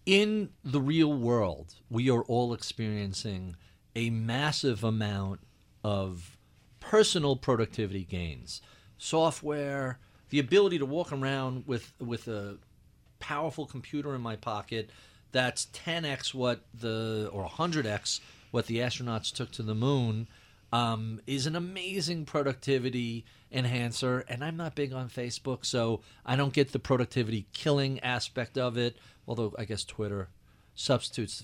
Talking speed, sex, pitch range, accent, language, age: 130 wpm, male, 115-150 Hz, American, English, 40-59